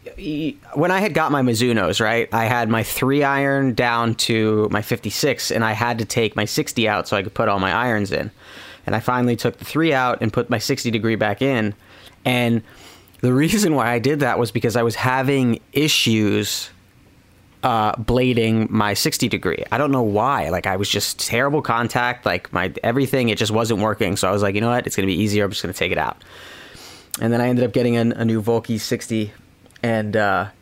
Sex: male